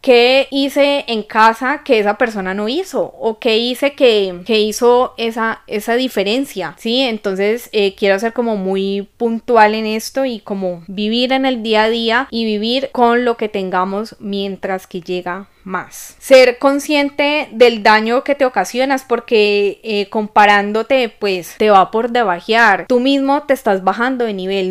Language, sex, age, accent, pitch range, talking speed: Spanish, female, 10-29, Colombian, 200-235 Hz, 165 wpm